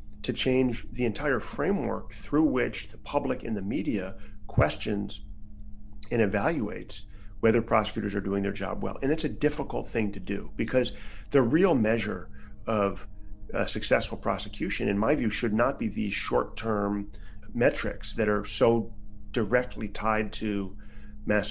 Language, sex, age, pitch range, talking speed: English, male, 40-59, 105-115 Hz, 150 wpm